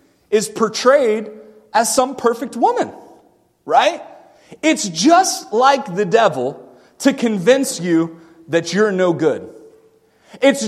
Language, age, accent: English, 30-49, American